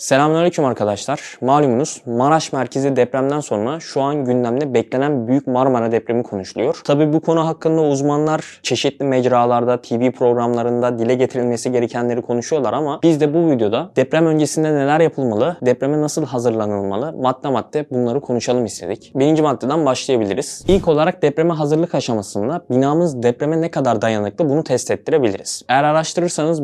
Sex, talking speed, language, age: male, 140 wpm, Turkish, 20-39